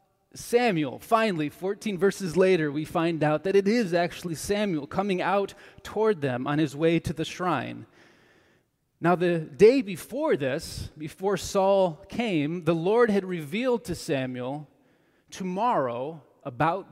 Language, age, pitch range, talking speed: English, 30-49, 145-190 Hz, 140 wpm